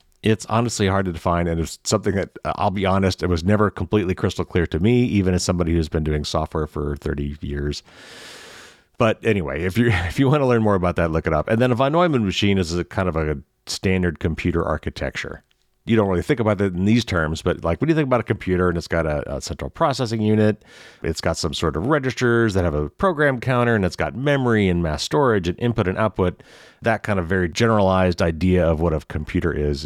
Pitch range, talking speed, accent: 80-110 Hz, 235 wpm, American